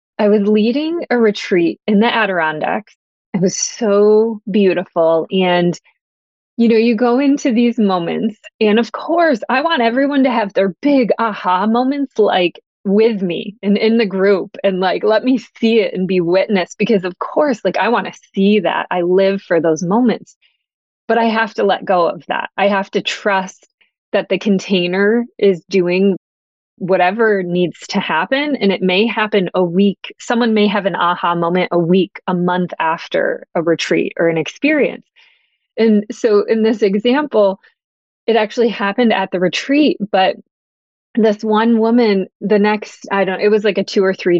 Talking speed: 175 wpm